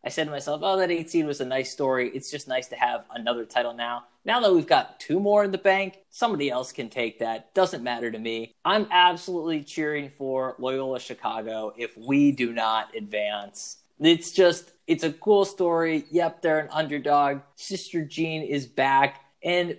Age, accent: 20-39, American